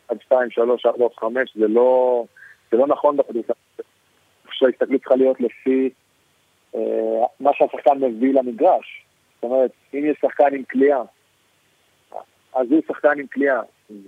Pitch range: 115-135 Hz